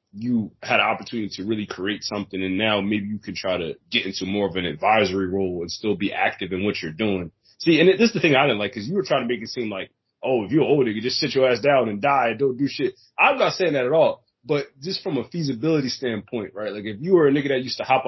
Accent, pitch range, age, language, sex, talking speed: American, 110-135 Hz, 20-39, English, male, 290 wpm